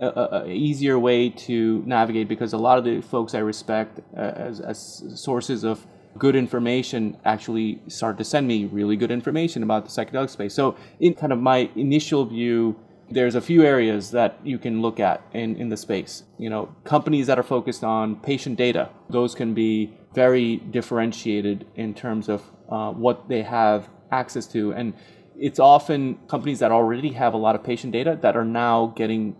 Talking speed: 185 wpm